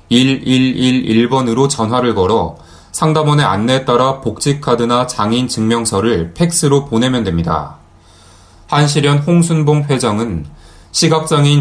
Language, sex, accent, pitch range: Korean, male, native, 95-140 Hz